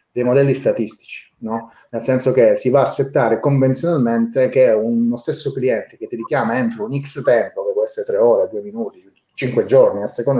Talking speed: 195 wpm